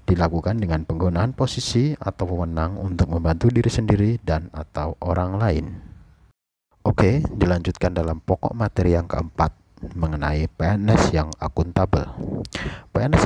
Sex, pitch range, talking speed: male, 80-110 Hz, 120 wpm